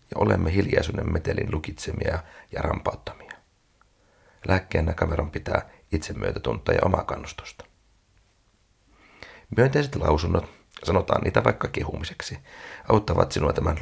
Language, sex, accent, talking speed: Finnish, male, native, 100 wpm